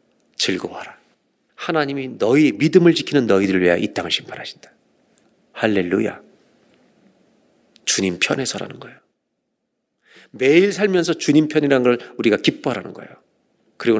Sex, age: male, 40-59